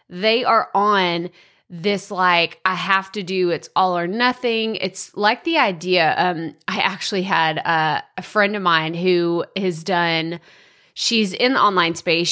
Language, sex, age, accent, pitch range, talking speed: English, female, 20-39, American, 175-215 Hz, 165 wpm